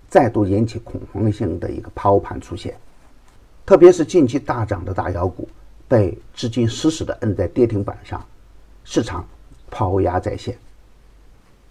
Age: 50-69